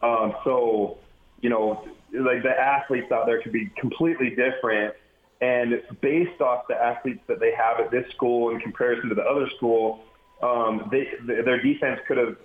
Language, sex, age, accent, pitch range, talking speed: English, male, 30-49, American, 115-135 Hz, 185 wpm